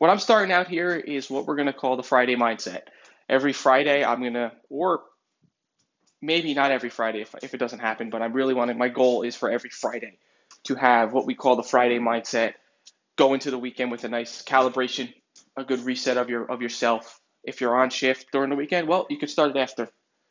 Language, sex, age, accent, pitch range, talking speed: English, male, 20-39, American, 120-150 Hz, 225 wpm